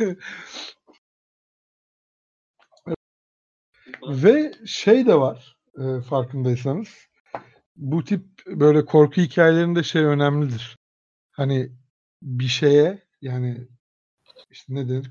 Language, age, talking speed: Turkish, 60-79, 80 wpm